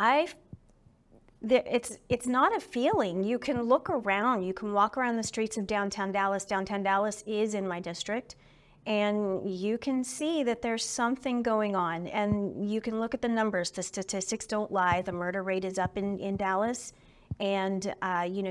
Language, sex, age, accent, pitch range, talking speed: English, female, 30-49, American, 180-210 Hz, 180 wpm